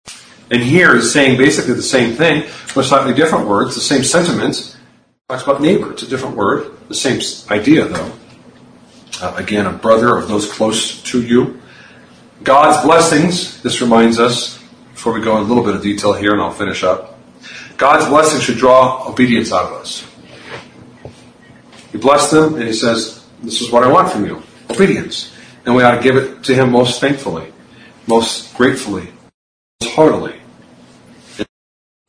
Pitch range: 110-135 Hz